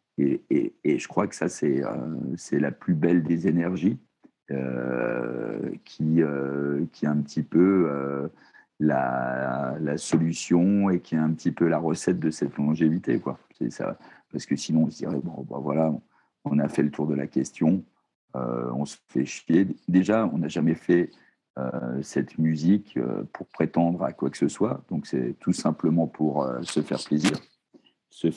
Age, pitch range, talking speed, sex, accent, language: 50-69, 70-85 Hz, 190 wpm, male, French, French